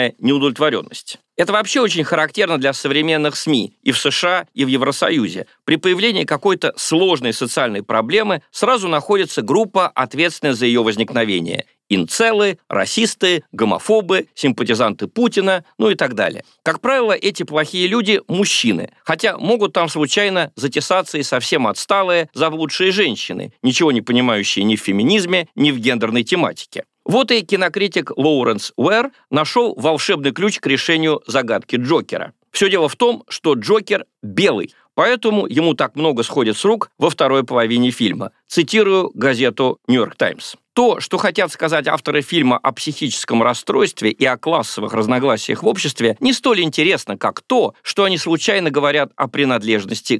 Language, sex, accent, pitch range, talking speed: Russian, male, native, 140-195 Hz, 145 wpm